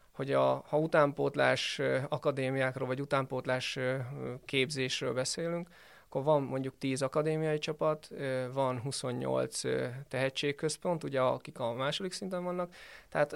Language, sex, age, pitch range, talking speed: Hungarian, male, 20-39, 130-155 Hz, 110 wpm